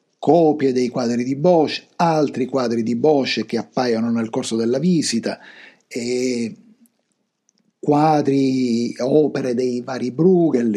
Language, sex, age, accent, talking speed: Italian, male, 50-69, native, 115 wpm